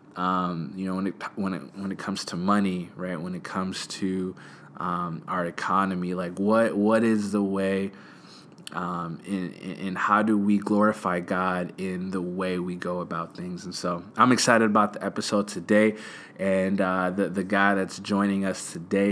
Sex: male